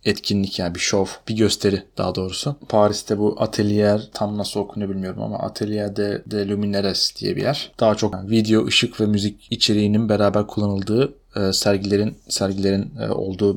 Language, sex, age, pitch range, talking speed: Turkish, male, 30-49, 100-110 Hz, 155 wpm